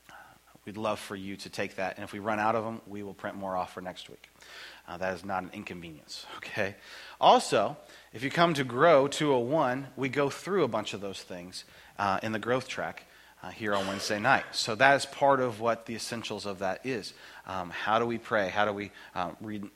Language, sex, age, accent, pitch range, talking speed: English, male, 30-49, American, 95-135 Hz, 230 wpm